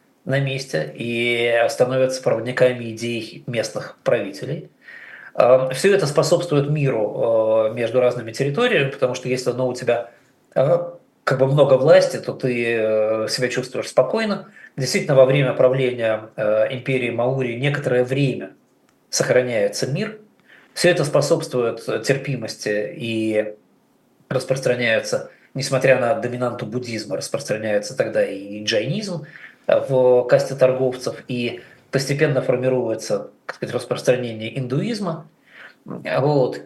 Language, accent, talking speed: Russian, native, 105 wpm